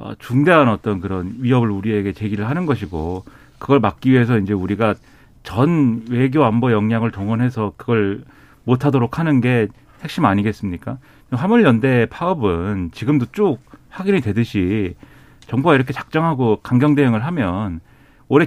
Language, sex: Korean, male